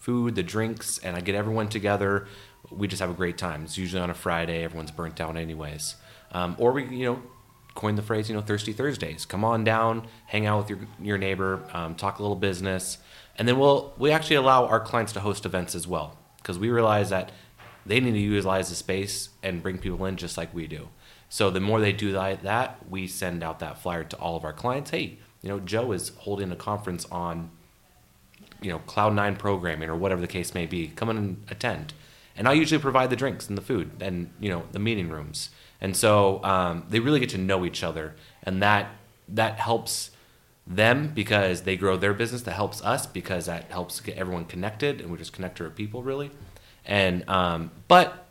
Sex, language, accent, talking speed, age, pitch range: male, English, American, 215 wpm, 30-49, 90-110 Hz